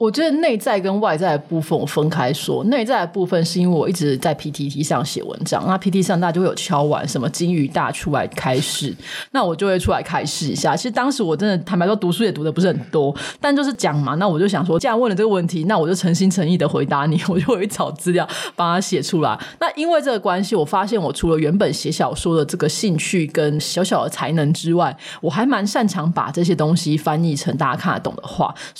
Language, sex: Chinese, female